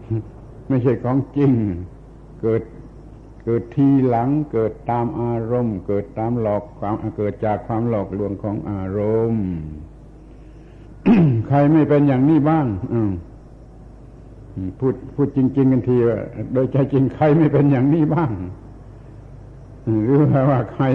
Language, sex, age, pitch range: Thai, male, 70-89, 110-135 Hz